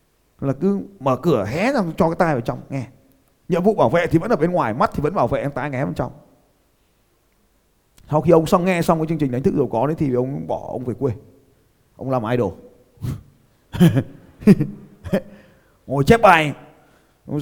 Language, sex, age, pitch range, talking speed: Vietnamese, male, 20-39, 120-175 Hz, 200 wpm